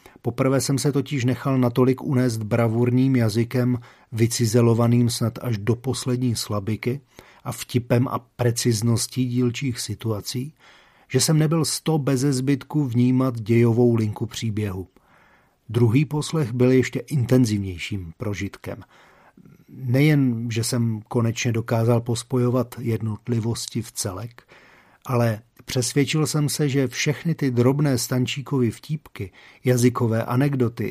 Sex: male